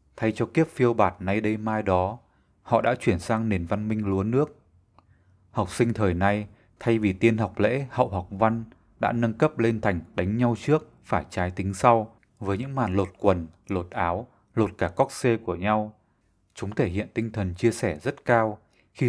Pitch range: 95-120 Hz